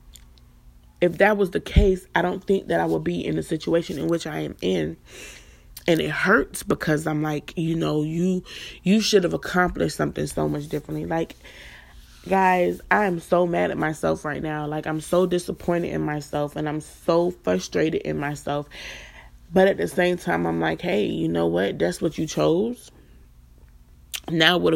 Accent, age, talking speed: American, 20-39, 185 wpm